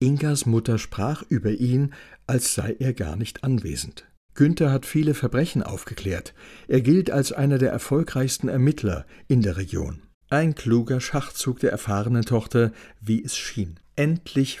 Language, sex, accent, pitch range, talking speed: German, male, German, 110-145 Hz, 150 wpm